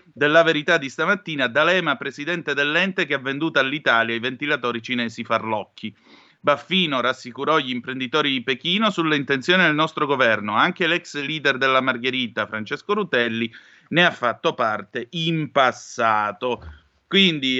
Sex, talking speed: male, 135 wpm